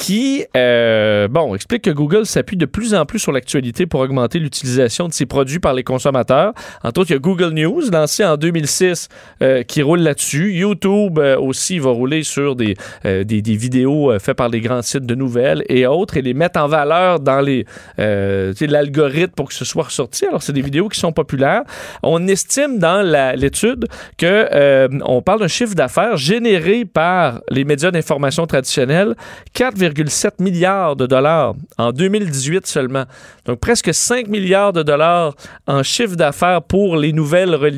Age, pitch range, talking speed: 40-59, 130-180 Hz, 185 wpm